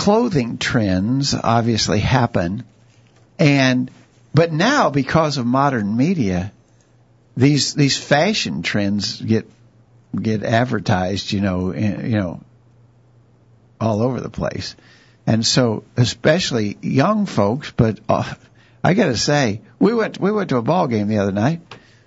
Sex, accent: male, American